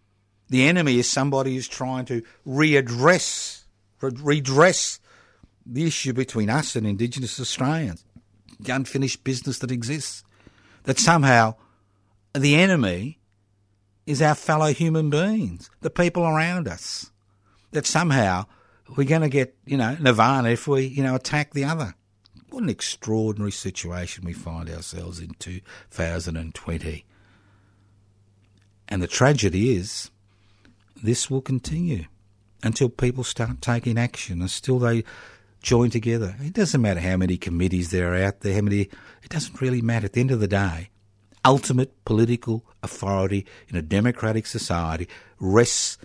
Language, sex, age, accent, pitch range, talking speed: English, male, 60-79, Australian, 100-130 Hz, 135 wpm